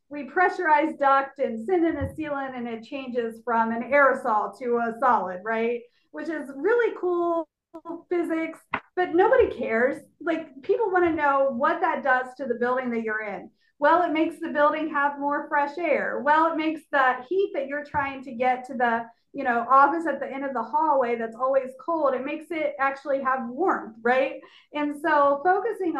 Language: English